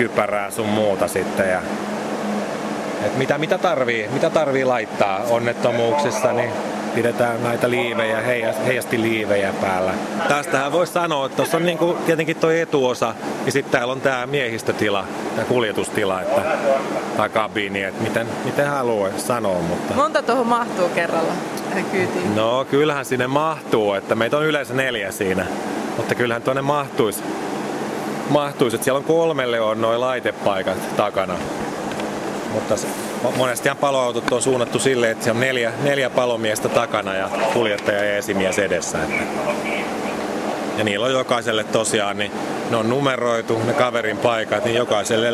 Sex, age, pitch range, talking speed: male, 30-49, 105-135 Hz, 140 wpm